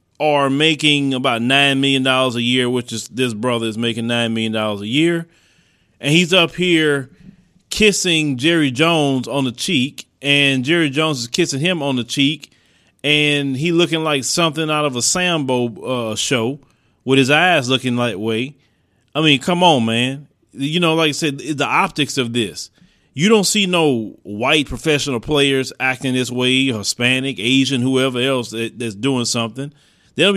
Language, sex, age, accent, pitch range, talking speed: English, male, 30-49, American, 125-165 Hz, 170 wpm